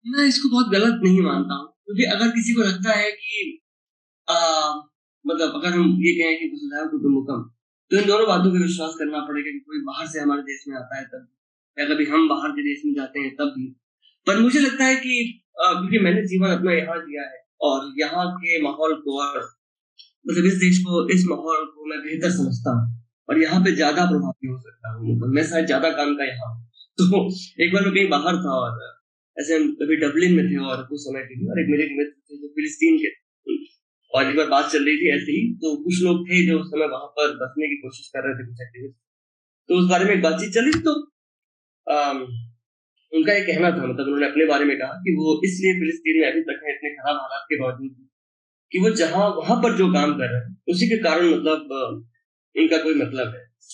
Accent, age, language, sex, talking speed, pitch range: native, 20-39, Hindi, male, 125 wpm, 140-195 Hz